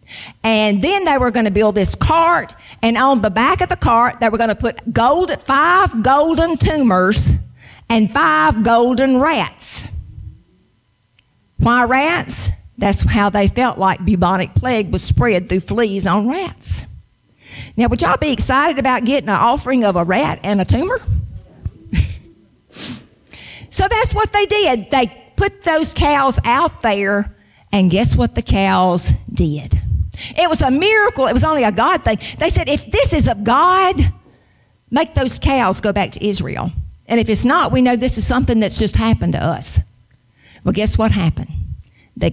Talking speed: 165 wpm